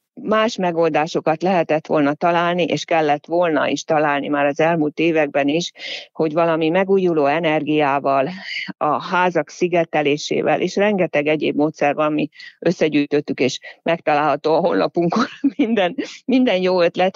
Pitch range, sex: 150-185 Hz, female